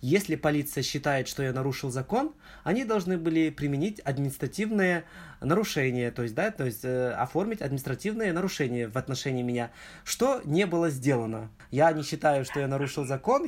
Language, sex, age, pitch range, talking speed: Russian, male, 20-39, 120-160 Hz, 160 wpm